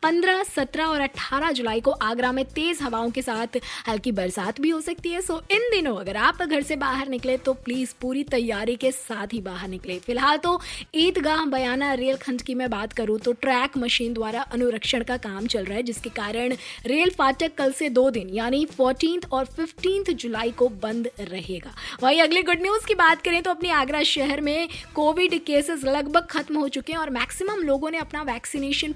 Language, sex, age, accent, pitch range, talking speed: Hindi, female, 20-39, native, 245-320 Hz, 205 wpm